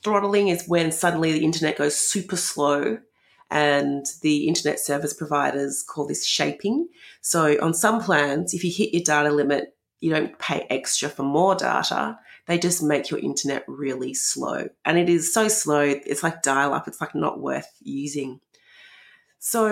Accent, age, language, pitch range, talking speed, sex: Australian, 30-49, English, 145-195 Hz, 165 wpm, female